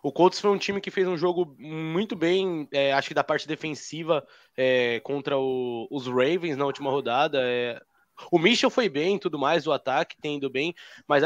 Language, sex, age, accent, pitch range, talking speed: Portuguese, male, 20-39, Brazilian, 140-185 Hz, 205 wpm